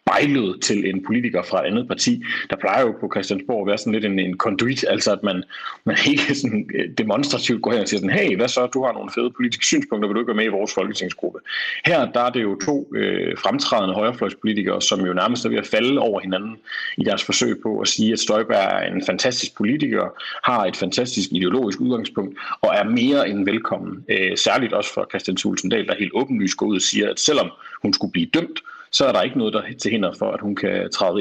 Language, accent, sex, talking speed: Danish, native, male, 225 wpm